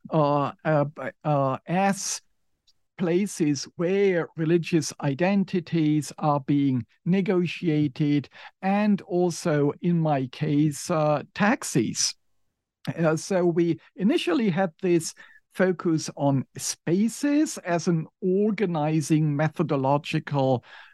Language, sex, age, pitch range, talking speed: English, male, 50-69, 140-180 Hz, 90 wpm